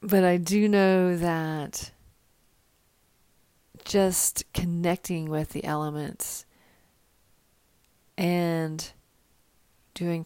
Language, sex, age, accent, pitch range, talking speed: English, female, 40-59, American, 165-190 Hz, 70 wpm